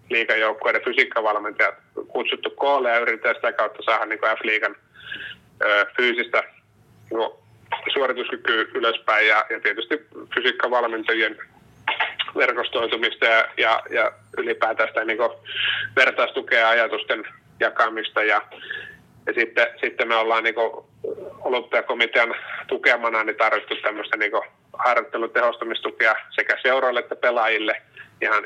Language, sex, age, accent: Finnish, male, 30-49, native